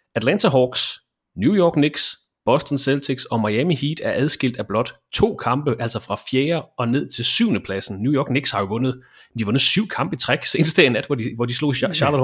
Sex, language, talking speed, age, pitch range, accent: male, English, 215 wpm, 30-49, 120-145 Hz, Danish